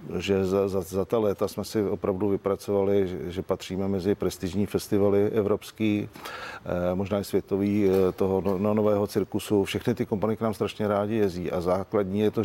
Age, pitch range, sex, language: 50-69, 95-105 Hz, male, Czech